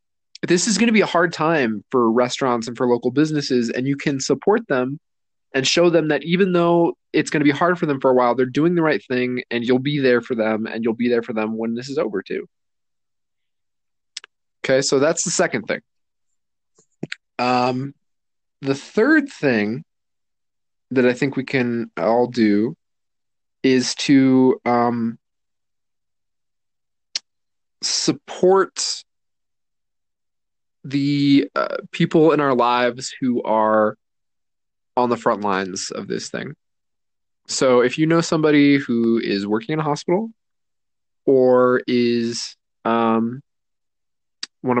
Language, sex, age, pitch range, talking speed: English, male, 20-39, 115-145 Hz, 145 wpm